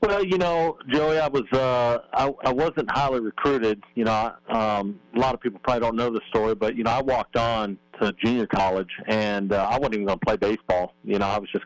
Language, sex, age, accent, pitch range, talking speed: English, male, 40-59, American, 100-115 Hz, 240 wpm